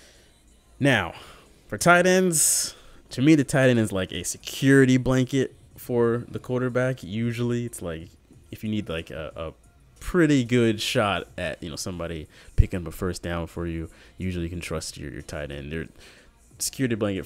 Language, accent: English, American